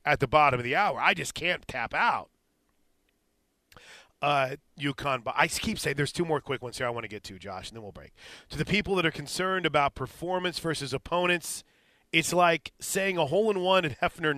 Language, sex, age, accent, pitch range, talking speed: English, male, 40-59, American, 135-170 Hz, 215 wpm